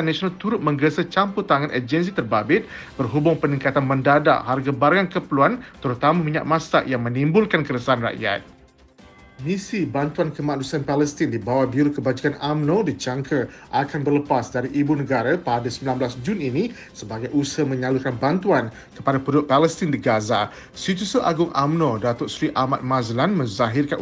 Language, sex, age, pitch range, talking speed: Malay, male, 50-69, 130-165 Hz, 140 wpm